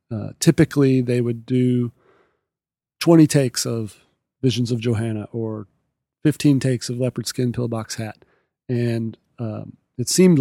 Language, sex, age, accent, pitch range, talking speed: English, male, 40-59, American, 120-140 Hz, 135 wpm